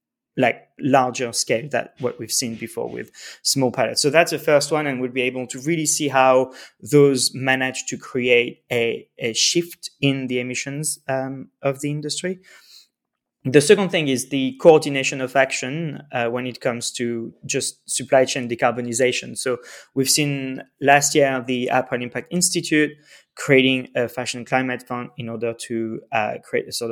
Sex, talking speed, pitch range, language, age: male, 170 wpm, 120-140 Hz, English, 20-39